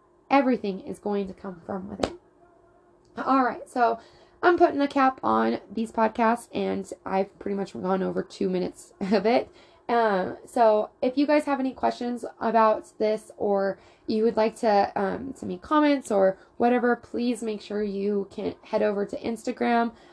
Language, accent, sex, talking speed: English, American, female, 175 wpm